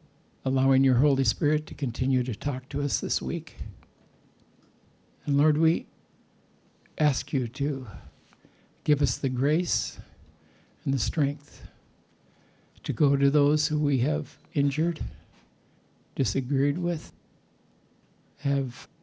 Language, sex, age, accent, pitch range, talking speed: English, male, 60-79, American, 125-150 Hz, 115 wpm